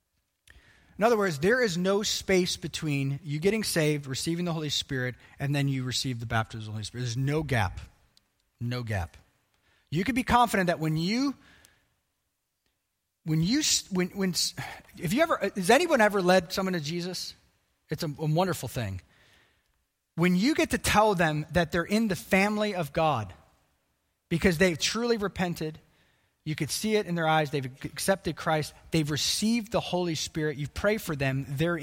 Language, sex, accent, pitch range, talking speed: English, male, American, 135-185 Hz, 175 wpm